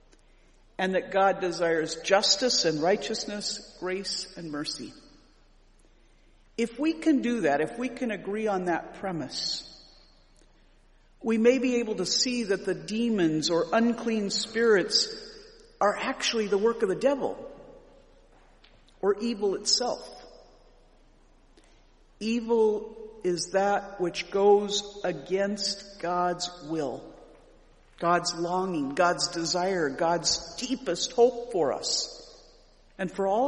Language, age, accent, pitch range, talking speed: English, 50-69, American, 180-240 Hz, 115 wpm